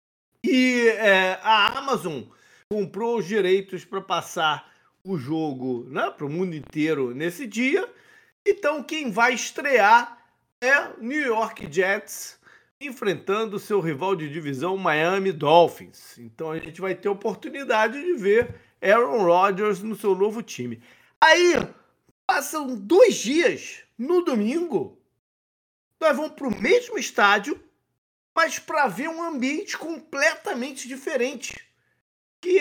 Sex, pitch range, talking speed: male, 190-290 Hz, 125 wpm